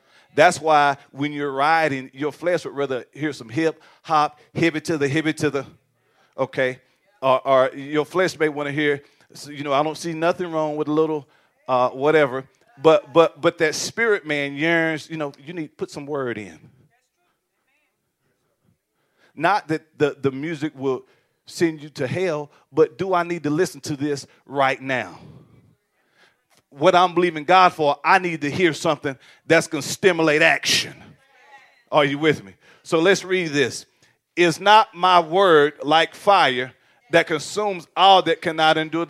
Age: 40-59